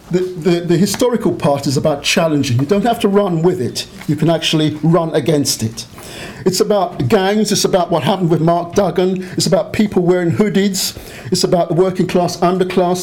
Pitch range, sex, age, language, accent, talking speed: 160-200 Hz, male, 50-69, English, British, 190 wpm